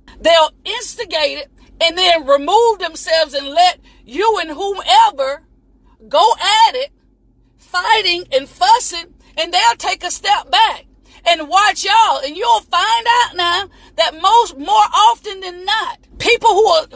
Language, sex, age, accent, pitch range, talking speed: English, female, 40-59, American, 310-435 Hz, 145 wpm